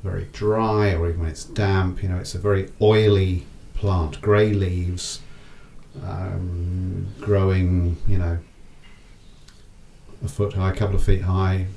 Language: English